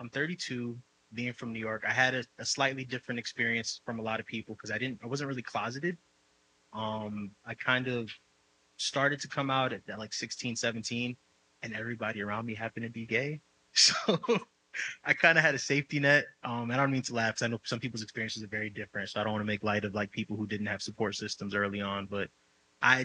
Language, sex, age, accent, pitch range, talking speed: English, male, 20-39, American, 105-125 Hz, 230 wpm